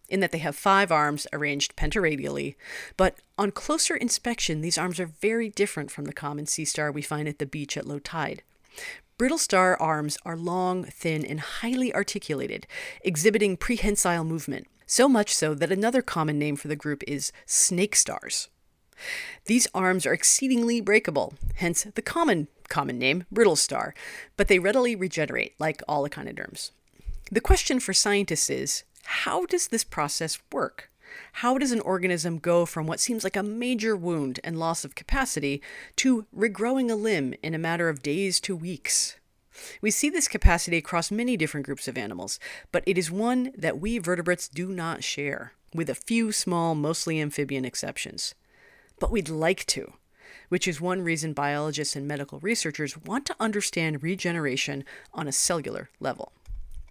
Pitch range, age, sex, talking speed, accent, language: 150-215 Hz, 40-59, female, 165 wpm, American, English